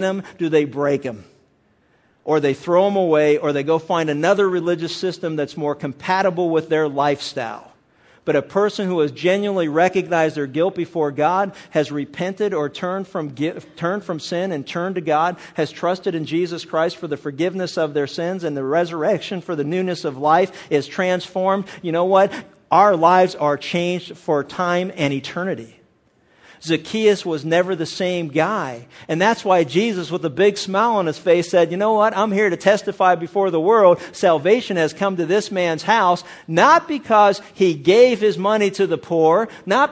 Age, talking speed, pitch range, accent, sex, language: 50-69, 180 wpm, 160-195 Hz, American, male, English